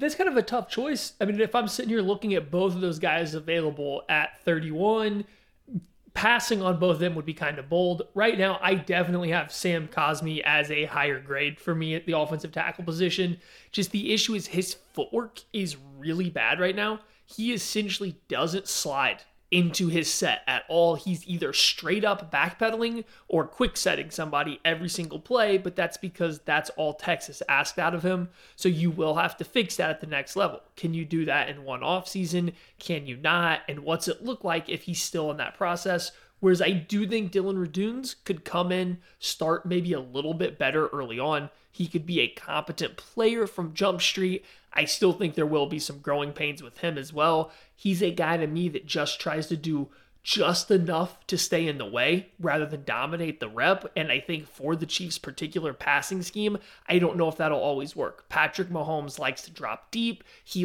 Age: 30-49